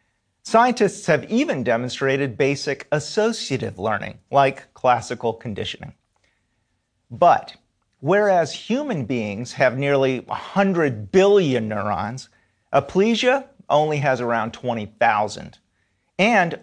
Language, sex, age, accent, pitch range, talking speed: English, male, 40-59, American, 125-185 Hz, 90 wpm